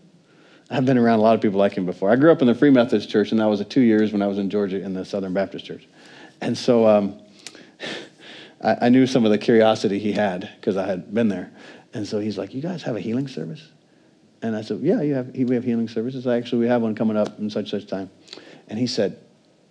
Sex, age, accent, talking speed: male, 50-69, American, 255 wpm